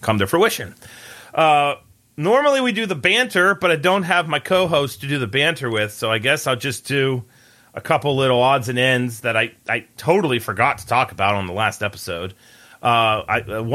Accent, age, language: American, 30-49, English